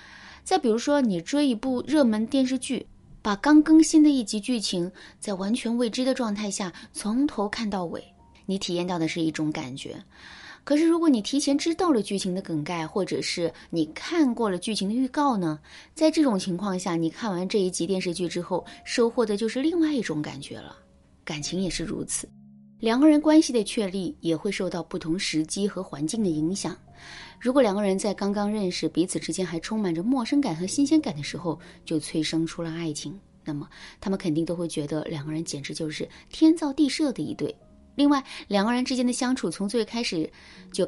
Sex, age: female, 20-39